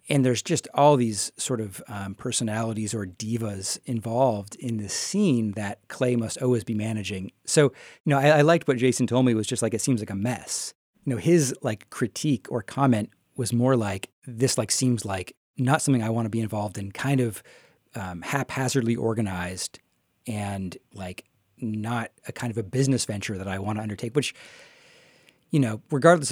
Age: 30-49